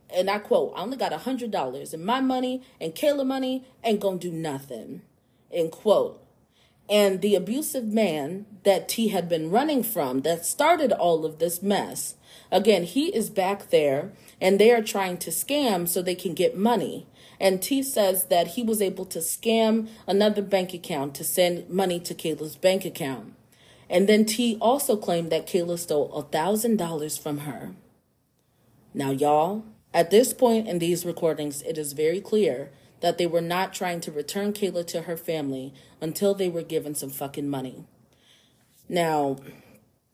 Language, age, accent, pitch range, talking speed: English, 40-59, American, 160-215 Hz, 175 wpm